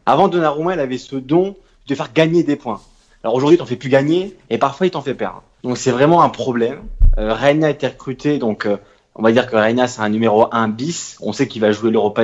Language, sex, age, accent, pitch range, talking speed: French, male, 20-39, French, 110-155 Hz, 255 wpm